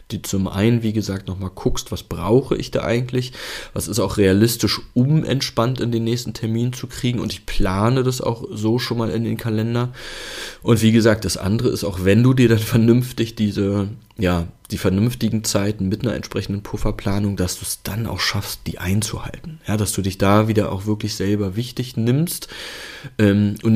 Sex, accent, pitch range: male, German, 100-115 Hz